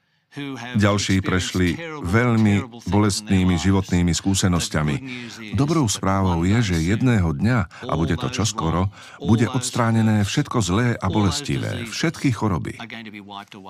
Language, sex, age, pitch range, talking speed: Slovak, male, 50-69, 90-115 Hz, 105 wpm